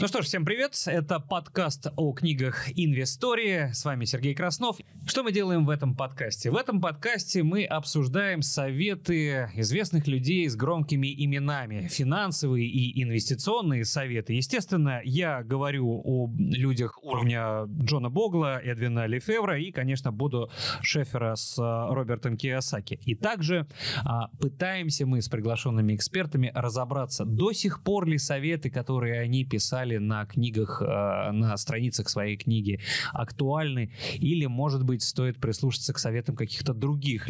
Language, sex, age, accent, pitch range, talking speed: Russian, male, 20-39, native, 120-160 Hz, 135 wpm